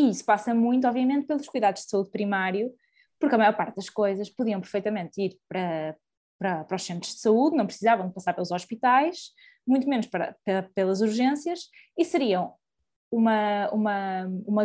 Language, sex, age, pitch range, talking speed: Portuguese, female, 20-39, 195-270 Hz, 170 wpm